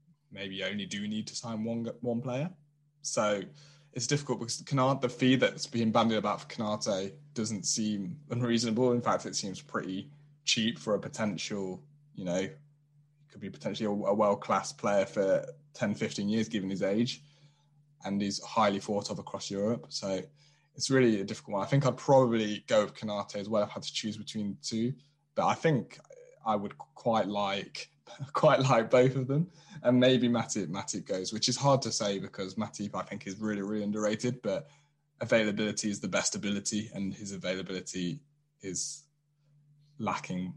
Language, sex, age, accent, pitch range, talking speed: English, male, 20-39, British, 105-145 Hz, 175 wpm